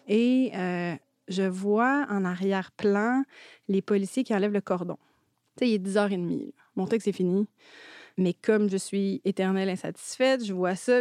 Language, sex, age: French, female, 30-49